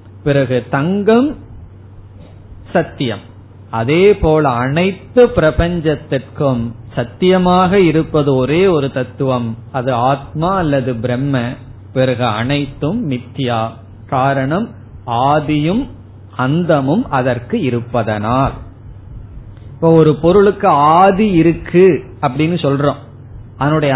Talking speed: 80 wpm